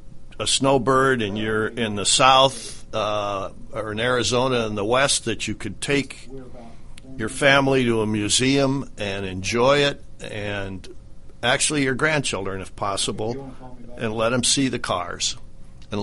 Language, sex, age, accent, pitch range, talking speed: English, male, 60-79, American, 105-130 Hz, 145 wpm